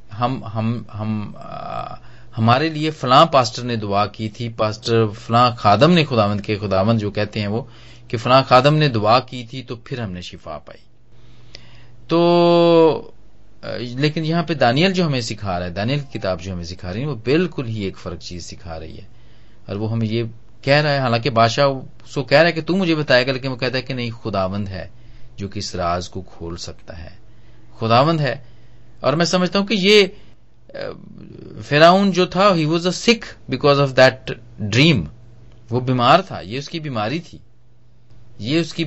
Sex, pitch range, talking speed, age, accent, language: male, 110-145 Hz, 160 wpm, 30-49, native, Hindi